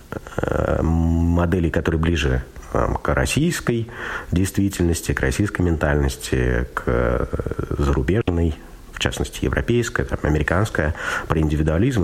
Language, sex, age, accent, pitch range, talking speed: Russian, male, 50-69, native, 75-100 Hz, 95 wpm